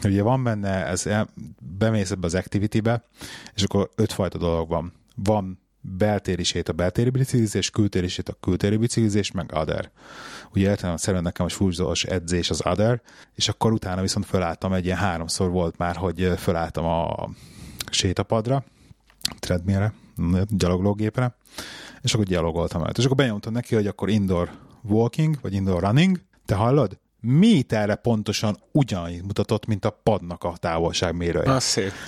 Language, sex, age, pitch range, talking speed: Hungarian, male, 30-49, 95-130 Hz, 140 wpm